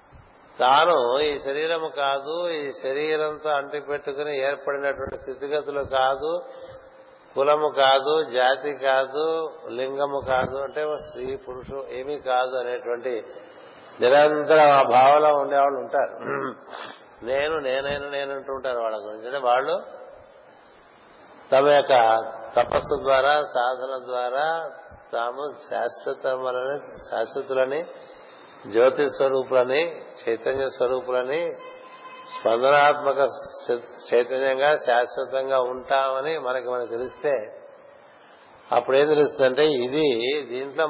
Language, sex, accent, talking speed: Telugu, male, native, 90 wpm